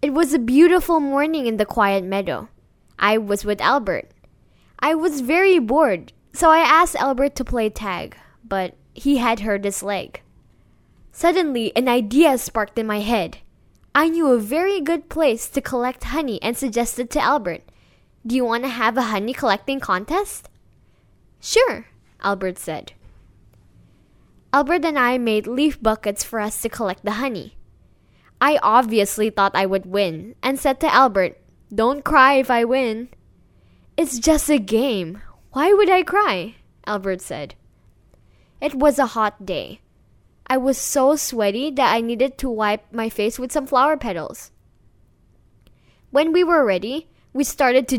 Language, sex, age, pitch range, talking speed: Indonesian, female, 10-29, 200-290 Hz, 160 wpm